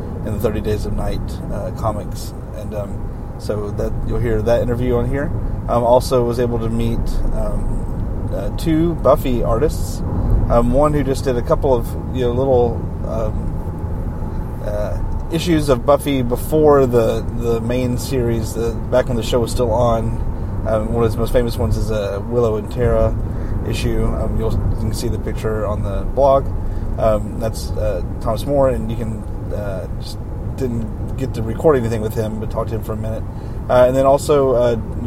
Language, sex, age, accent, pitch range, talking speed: English, male, 30-49, American, 105-120 Hz, 190 wpm